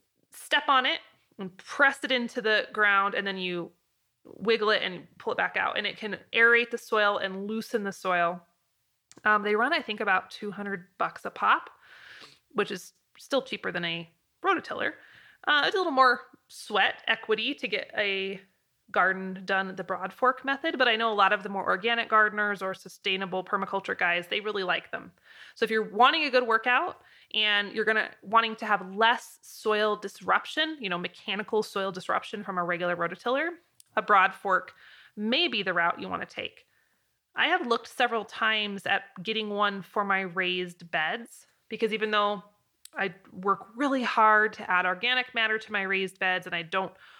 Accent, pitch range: American, 190-235 Hz